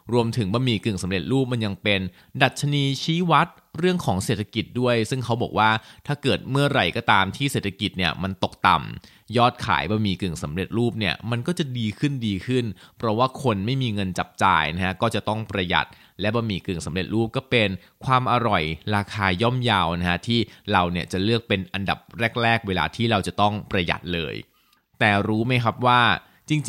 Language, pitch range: Thai, 95-130 Hz